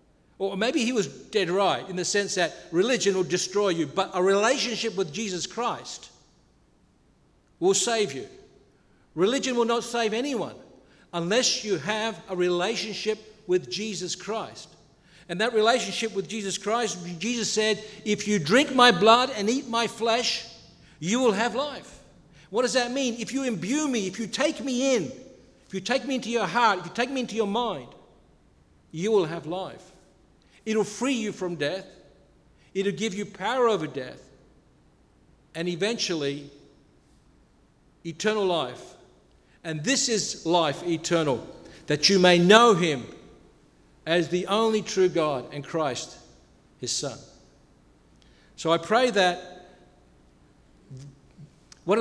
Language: English